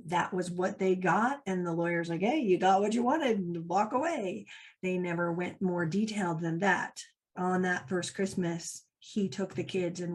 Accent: American